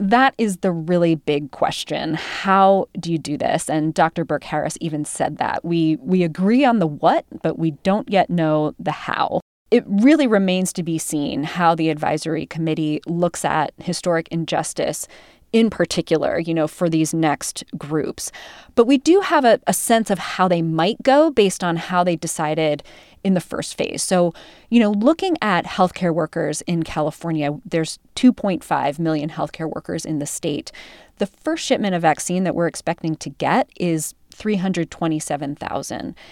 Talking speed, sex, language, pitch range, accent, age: 175 wpm, female, English, 160-200 Hz, American, 20-39